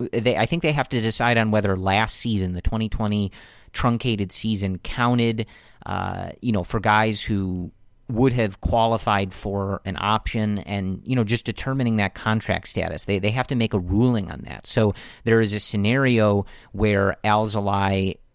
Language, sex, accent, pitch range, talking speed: English, male, American, 95-115 Hz, 170 wpm